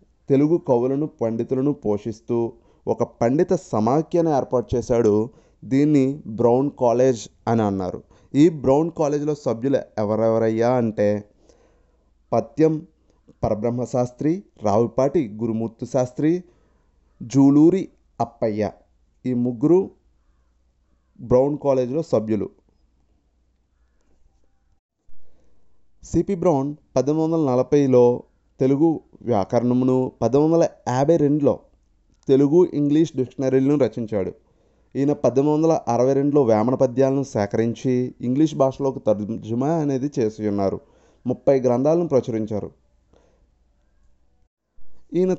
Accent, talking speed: native, 85 wpm